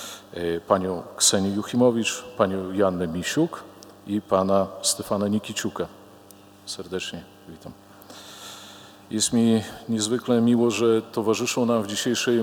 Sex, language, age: male, Polish, 40-59